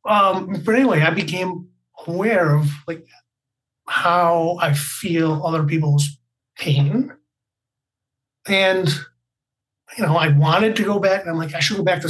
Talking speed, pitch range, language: 150 wpm, 145-205 Hz, English